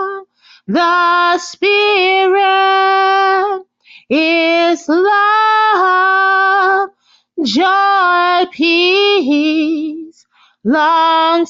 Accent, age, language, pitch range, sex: American, 30-49, English, 335-400 Hz, female